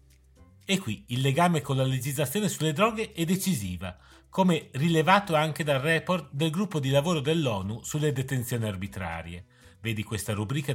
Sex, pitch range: male, 105-160 Hz